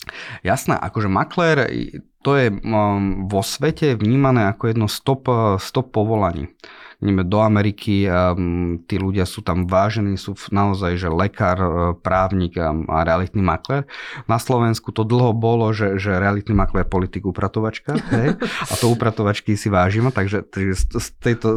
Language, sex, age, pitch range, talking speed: Slovak, male, 30-49, 95-115 Hz, 140 wpm